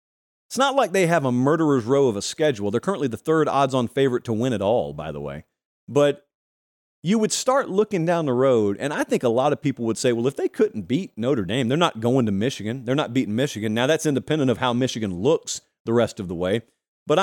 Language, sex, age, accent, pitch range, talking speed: English, male, 40-59, American, 115-165 Hz, 245 wpm